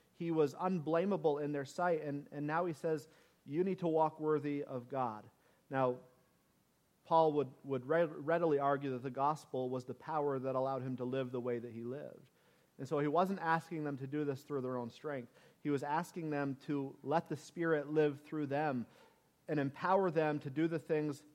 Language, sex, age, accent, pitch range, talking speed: English, male, 40-59, American, 140-160 Hz, 200 wpm